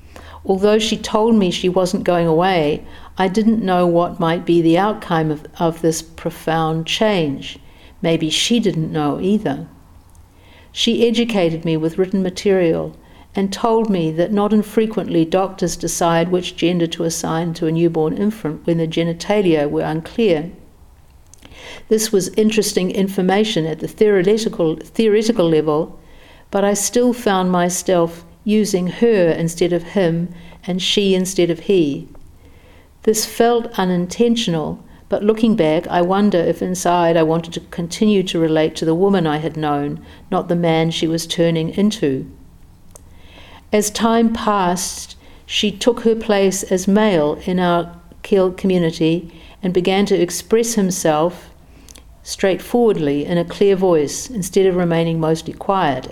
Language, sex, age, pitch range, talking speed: English, female, 60-79, 160-200 Hz, 145 wpm